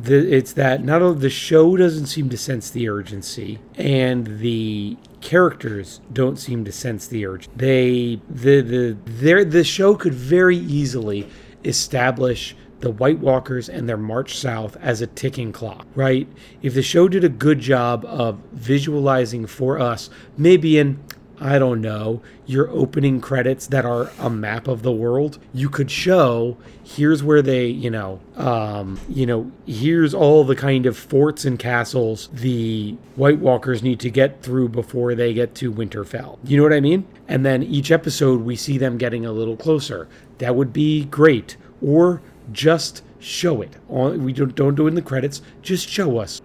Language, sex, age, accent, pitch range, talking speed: English, male, 30-49, American, 120-145 Hz, 175 wpm